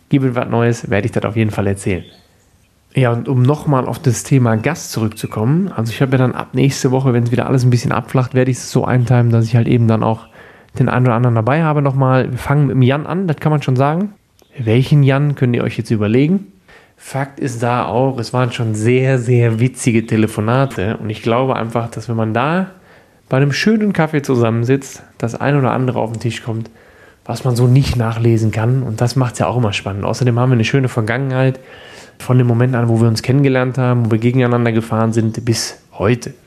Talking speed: 225 wpm